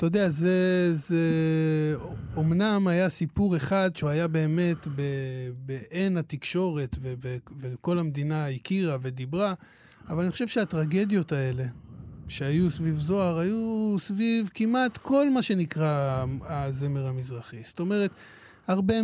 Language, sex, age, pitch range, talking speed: Hebrew, male, 20-39, 155-200 Hz, 125 wpm